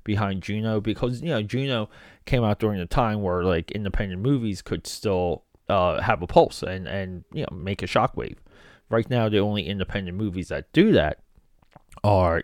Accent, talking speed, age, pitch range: American, 185 wpm, 30-49, 100-130 Hz